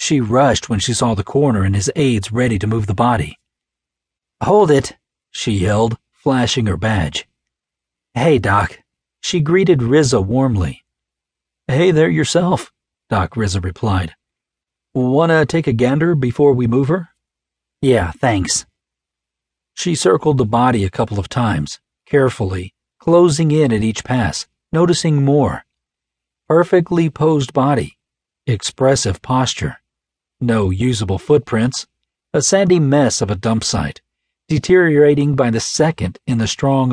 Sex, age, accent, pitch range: male, 40-59, American, 85-135 Hz